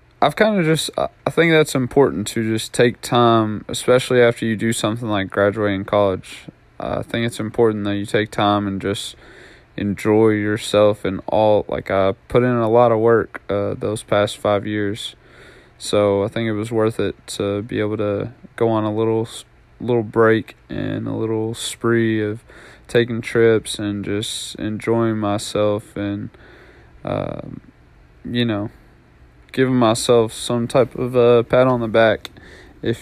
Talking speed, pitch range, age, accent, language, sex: 165 wpm, 105-115 Hz, 20-39, American, English, male